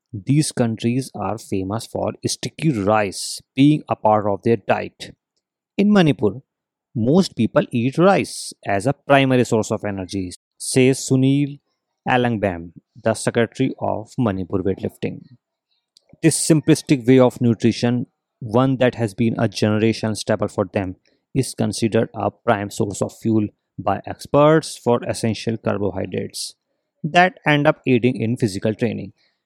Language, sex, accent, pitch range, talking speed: Hindi, male, native, 105-135 Hz, 135 wpm